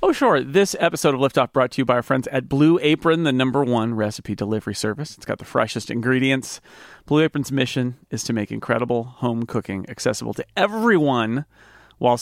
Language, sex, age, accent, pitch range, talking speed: English, male, 40-59, American, 110-140 Hz, 190 wpm